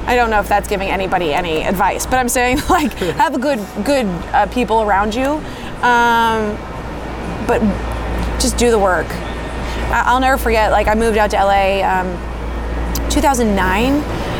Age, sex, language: 20-39, female, English